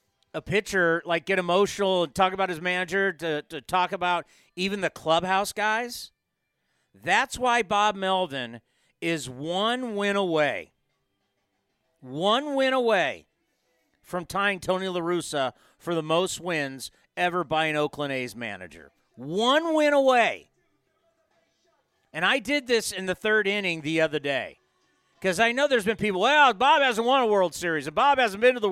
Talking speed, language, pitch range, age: 160 wpm, English, 175-245 Hz, 40-59